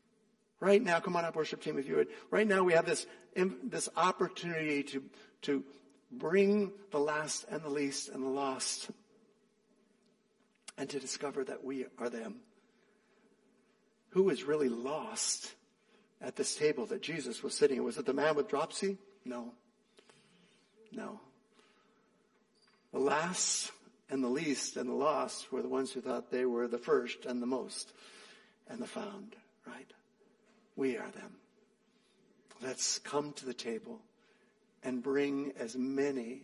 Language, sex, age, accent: English, male, 60-79, American